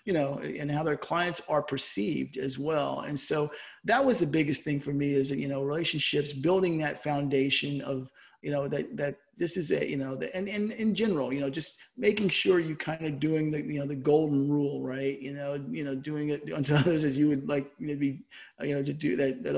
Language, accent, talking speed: English, American, 235 wpm